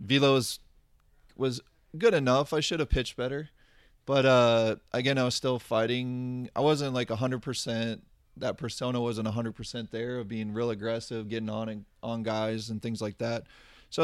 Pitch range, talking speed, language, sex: 110-125 Hz, 175 wpm, English, male